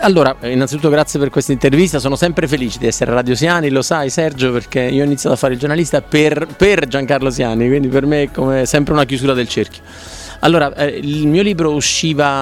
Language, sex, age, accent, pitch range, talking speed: Italian, male, 30-49, native, 120-150 Hz, 220 wpm